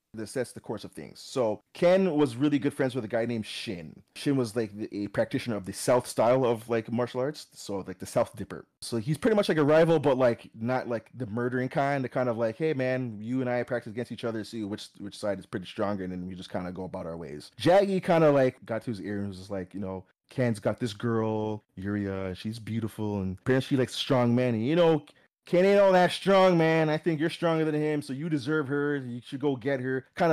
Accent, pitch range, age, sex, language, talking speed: American, 110-155 Hz, 30-49, male, English, 260 wpm